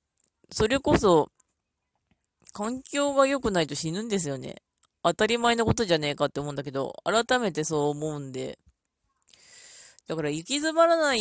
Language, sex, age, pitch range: Japanese, female, 20-39, 150-230 Hz